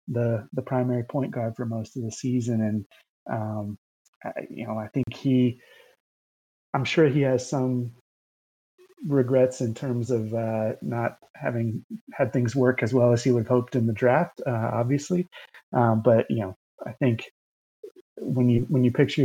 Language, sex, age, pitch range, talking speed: English, male, 30-49, 115-135 Hz, 175 wpm